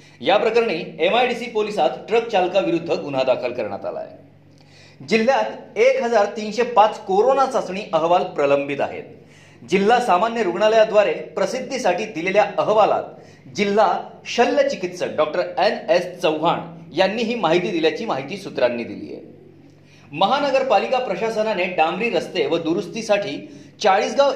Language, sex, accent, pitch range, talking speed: Marathi, male, native, 165-230 Hz, 75 wpm